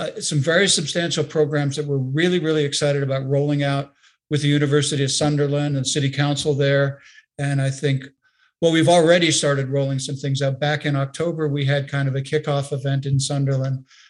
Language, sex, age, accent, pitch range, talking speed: English, male, 50-69, American, 140-155 Hz, 190 wpm